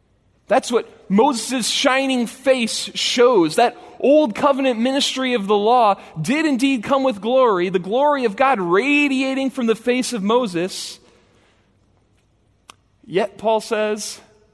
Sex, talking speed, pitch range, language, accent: male, 130 wpm, 170-235 Hz, English, American